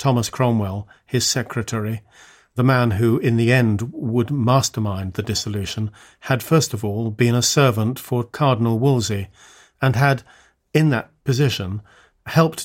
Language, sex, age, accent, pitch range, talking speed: English, male, 40-59, British, 110-130 Hz, 140 wpm